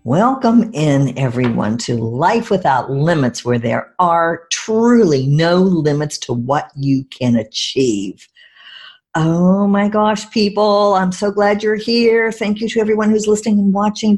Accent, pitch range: American, 150-215 Hz